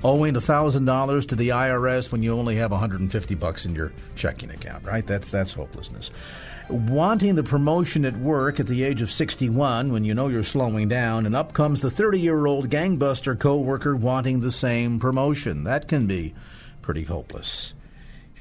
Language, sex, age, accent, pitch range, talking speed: English, male, 50-69, American, 110-145 Hz, 170 wpm